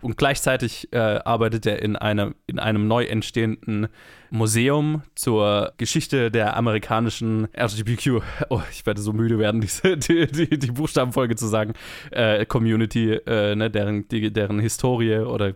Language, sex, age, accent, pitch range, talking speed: German, male, 20-39, German, 105-120 Hz, 150 wpm